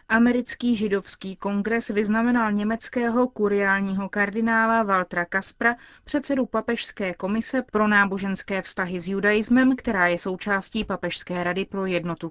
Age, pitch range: 30-49, 195-230 Hz